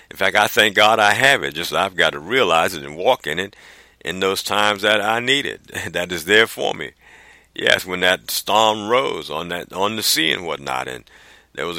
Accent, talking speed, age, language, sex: American, 230 wpm, 50-69, English, male